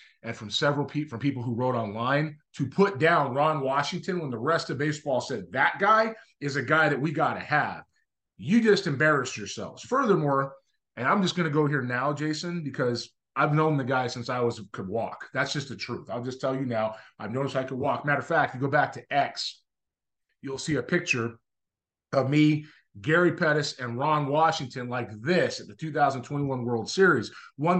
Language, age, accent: English, 30-49, American